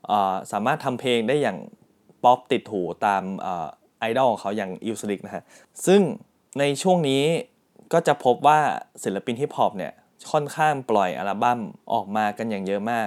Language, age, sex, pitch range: Thai, 20-39, male, 105-135 Hz